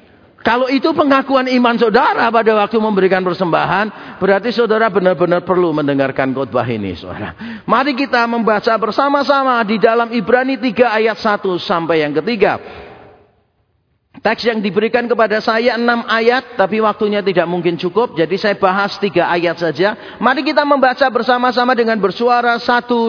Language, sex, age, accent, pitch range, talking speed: Indonesian, male, 40-59, native, 195-255 Hz, 145 wpm